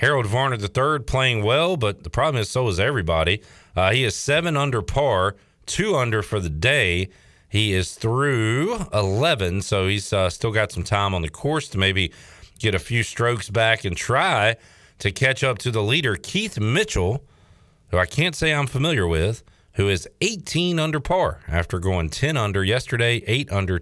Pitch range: 95-135 Hz